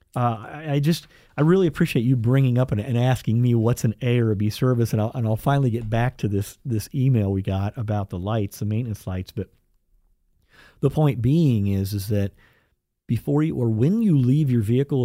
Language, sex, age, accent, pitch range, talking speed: English, male, 50-69, American, 105-135 Hz, 215 wpm